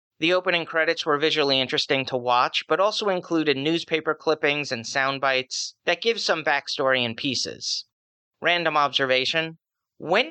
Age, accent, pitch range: 30-49, American, 135-170 Hz